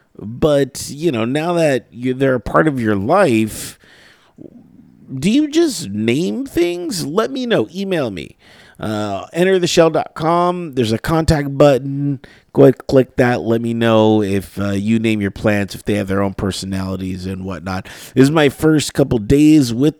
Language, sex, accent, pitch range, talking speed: English, male, American, 100-155 Hz, 165 wpm